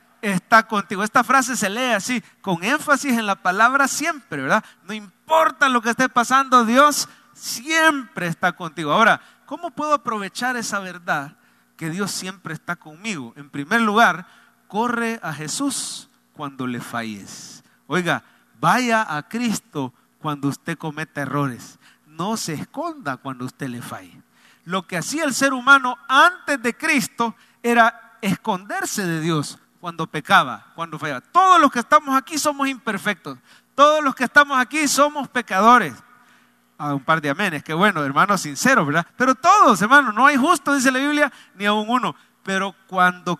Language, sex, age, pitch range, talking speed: English, male, 40-59, 165-255 Hz, 160 wpm